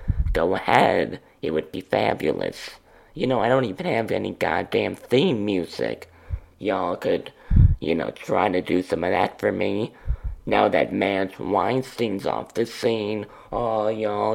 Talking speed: 160 wpm